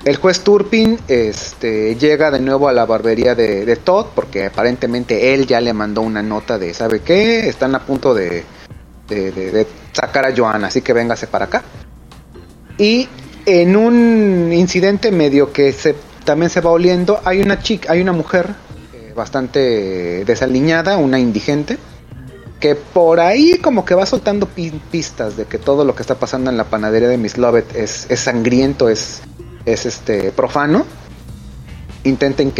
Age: 30-49